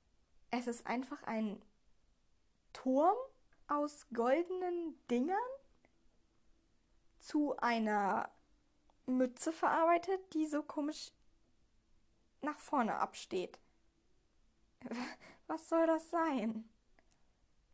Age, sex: 20-39, female